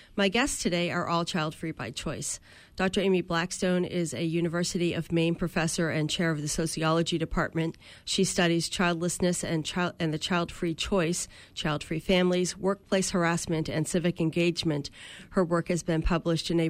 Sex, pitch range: female, 160-180 Hz